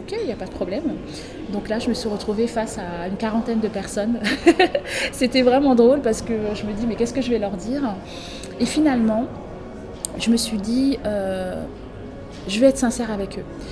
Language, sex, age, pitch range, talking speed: English, female, 20-39, 210-245 Hz, 200 wpm